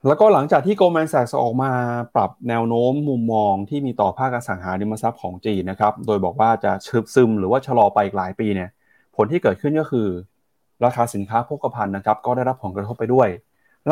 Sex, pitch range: male, 100-125 Hz